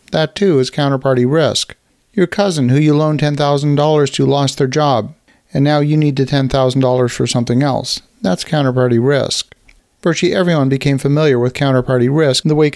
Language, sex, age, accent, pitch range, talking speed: English, male, 50-69, American, 130-155 Hz, 175 wpm